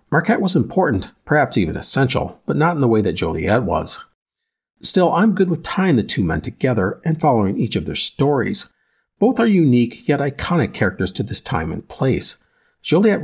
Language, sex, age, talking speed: English, male, 50-69, 185 wpm